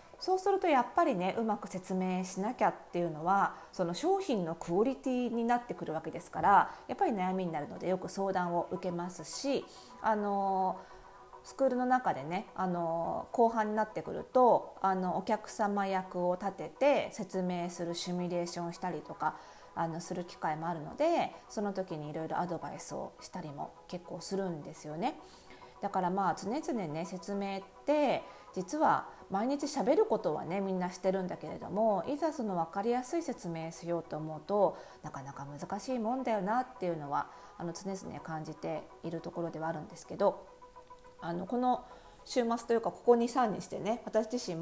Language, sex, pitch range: Japanese, female, 175-255 Hz